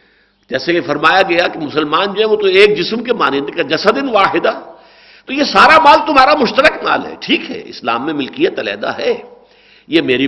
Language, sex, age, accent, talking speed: English, male, 60-79, Indian, 200 wpm